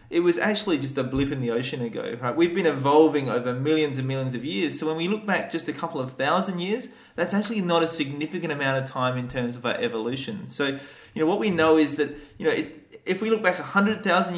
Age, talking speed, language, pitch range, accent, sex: 20-39, 250 wpm, English, 130-170 Hz, Australian, male